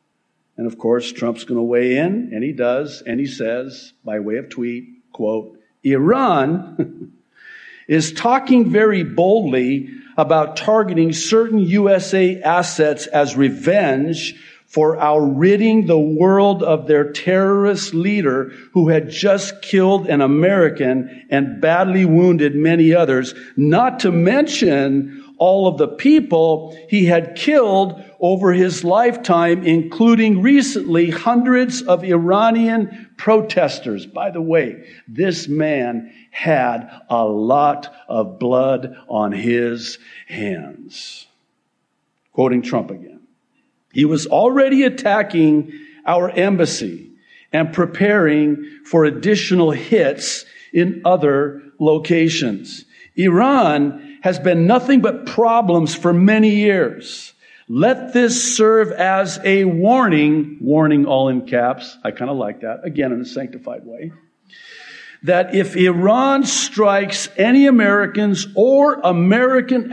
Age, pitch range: 50-69, 145-210 Hz